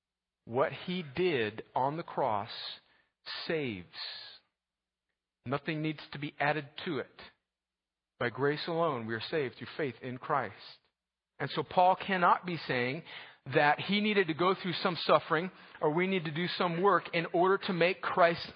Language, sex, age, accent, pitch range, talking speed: English, male, 50-69, American, 170-255 Hz, 160 wpm